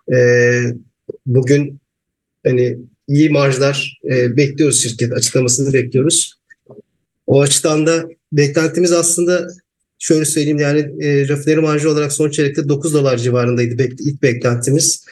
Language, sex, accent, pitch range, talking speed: English, male, Turkish, 125-155 Hz, 120 wpm